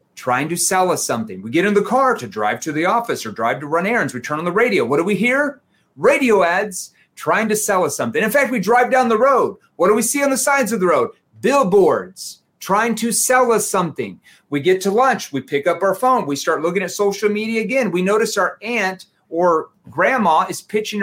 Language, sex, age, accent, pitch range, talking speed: English, male, 30-49, American, 145-210 Hz, 235 wpm